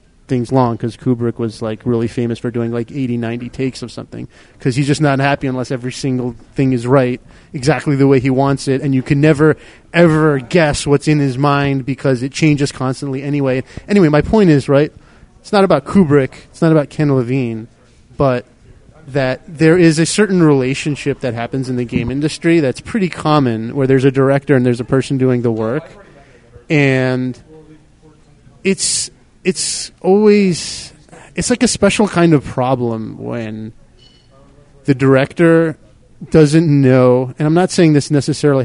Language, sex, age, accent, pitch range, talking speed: English, male, 30-49, American, 125-155 Hz, 170 wpm